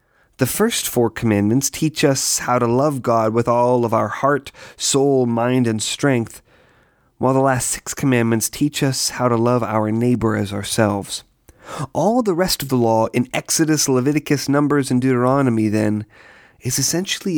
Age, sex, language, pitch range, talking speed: 30-49, male, English, 115-145 Hz, 165 wpm